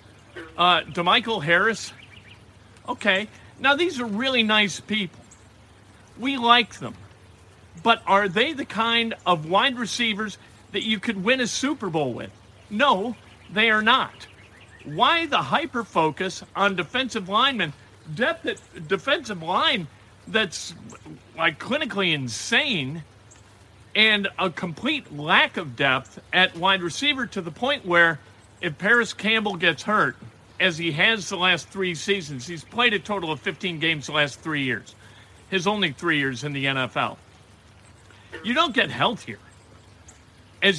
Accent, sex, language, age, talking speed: American, male, English, 50-69, 140 wpm